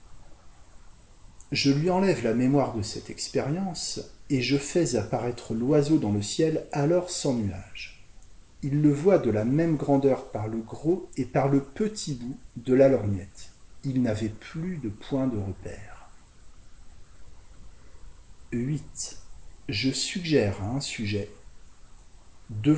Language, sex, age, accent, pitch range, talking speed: French, male, 40-59, French, 105-145 Hz, 135 wpm